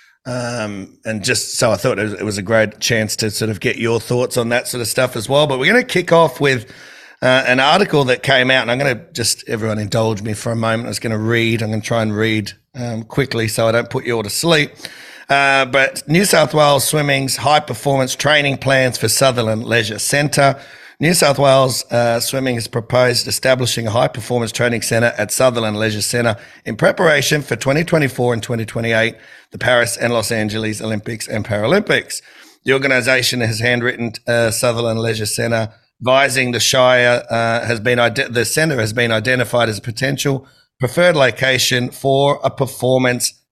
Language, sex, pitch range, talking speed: English, male, 115-135 Hz, 195 wpm